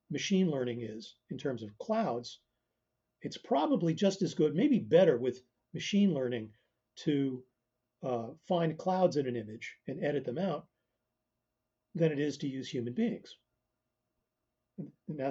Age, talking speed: 40-59, 140 wpm